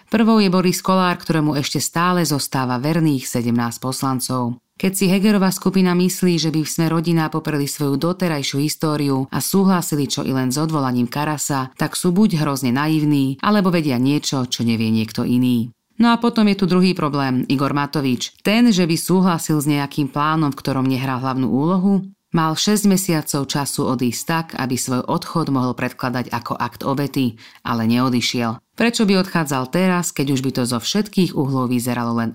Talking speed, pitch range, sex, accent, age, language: 175 wpm, 130-185 Hz, female, native, 30-49, Czech